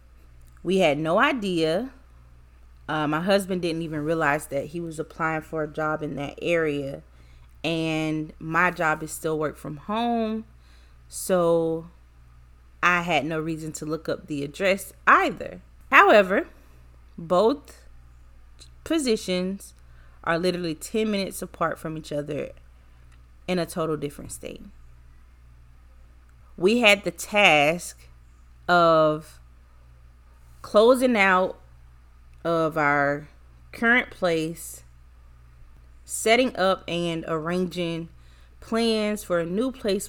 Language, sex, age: English, female, 30-49